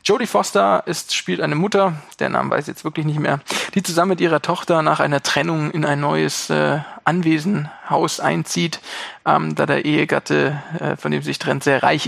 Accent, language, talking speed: German, German, 200 wpm